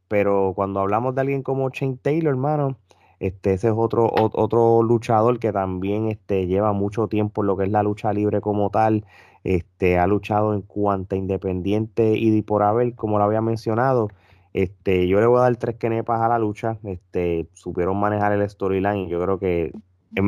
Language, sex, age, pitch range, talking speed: Spanish, male, 20-39, 95-115 Hz, 190 wpm